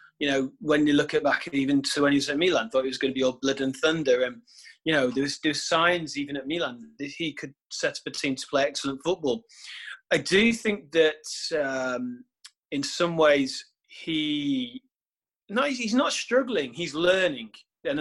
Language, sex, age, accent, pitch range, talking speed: English, male, 30-49, British, 150-230 Hz, 205 wpm